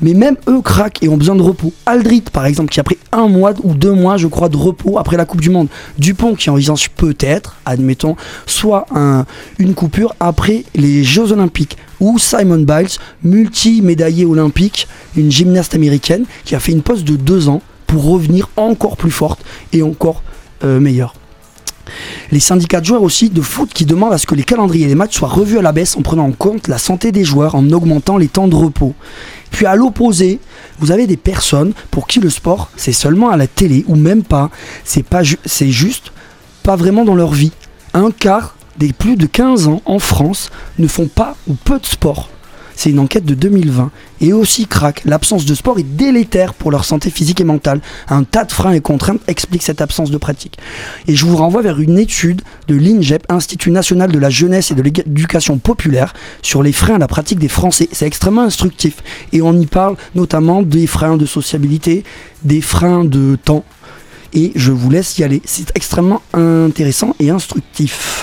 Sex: male